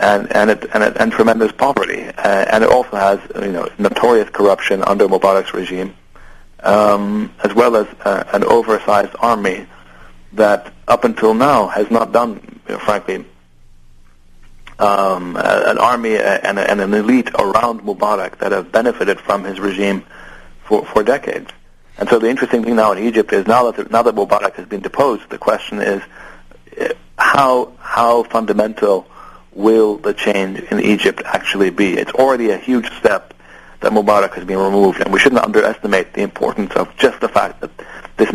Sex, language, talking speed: male, English, 170 wpm